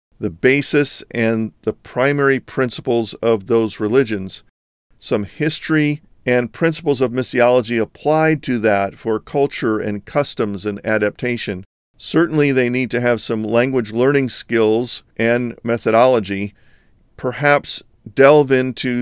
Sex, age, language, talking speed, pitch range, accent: male, 50-69, English, 120 wpm, 110-135 Hz, American